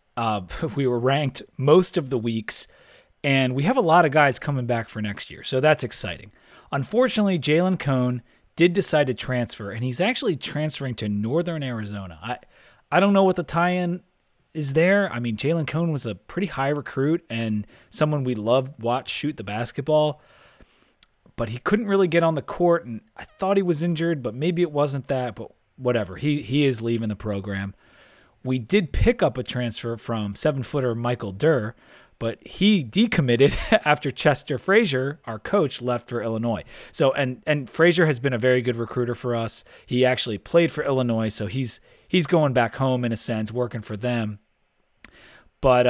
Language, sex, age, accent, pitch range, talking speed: English, male, 30-49, American, 115-155 Hz, 185 wpm